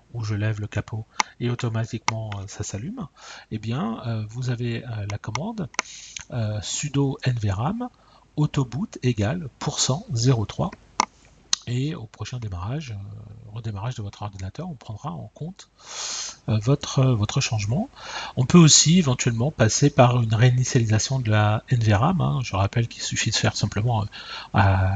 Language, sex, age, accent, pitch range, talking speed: French, male, 40-59, French, 105-130 Hz, 140 wpm